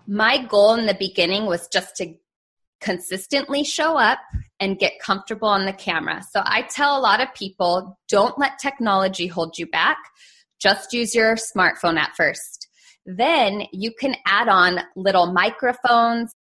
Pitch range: 180-235 Hz